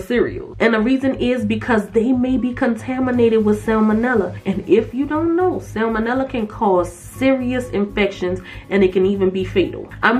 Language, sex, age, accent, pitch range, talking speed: English, female, 20-39, American, 195-250 Hz, 170 wpm